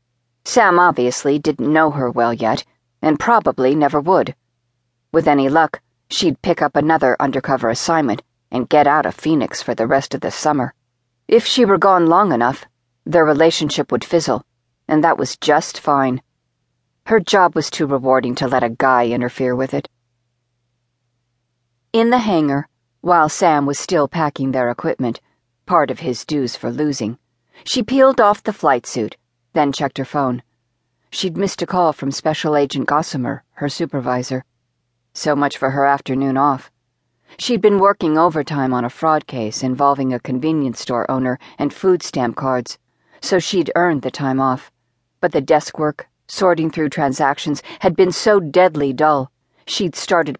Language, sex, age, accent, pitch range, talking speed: English, female, 50-69, American, 125-160 Hz, 165 wpm